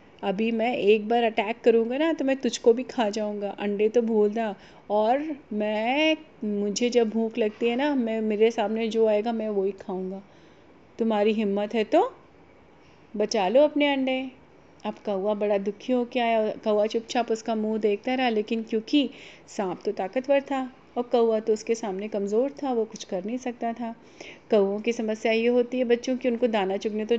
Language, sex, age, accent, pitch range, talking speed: Hindi, female, 30-49, native, 210-250 Hz, 190 wpm